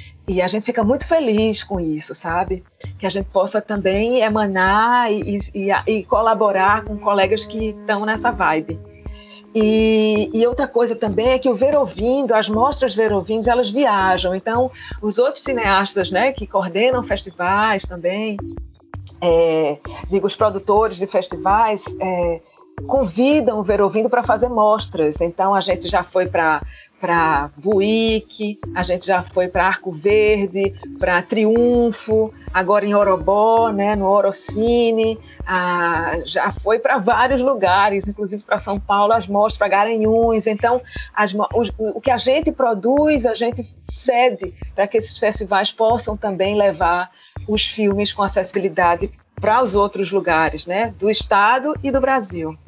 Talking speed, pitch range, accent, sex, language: 150 wpm, 190-225 Hz, Brazilian, female, Portuguese